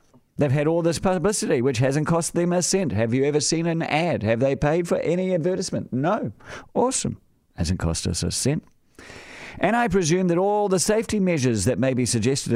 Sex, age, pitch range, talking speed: male, 50-69, 110-160 Hz, 200 wpm